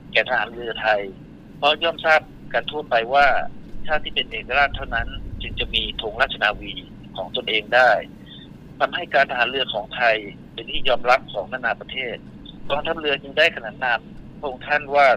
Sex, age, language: male, 60-79, Thai